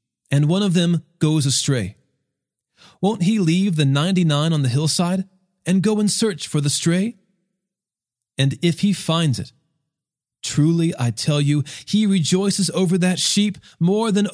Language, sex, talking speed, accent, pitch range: English, male, 155 wpm, American, 125-180 Hz